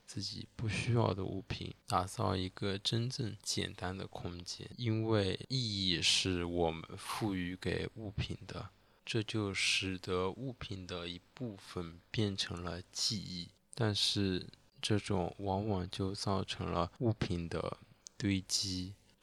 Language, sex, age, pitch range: Chinese, male, 20-39, 90-110 Hz